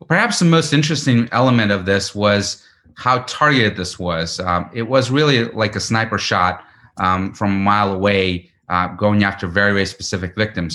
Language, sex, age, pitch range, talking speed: English, male, 30-49, 95-115 Hz, 180 wpm